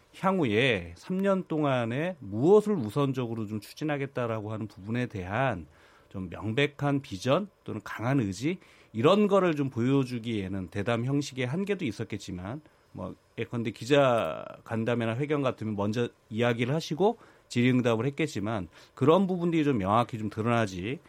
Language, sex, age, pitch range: Korean, male, 40-59, 110-150 Hz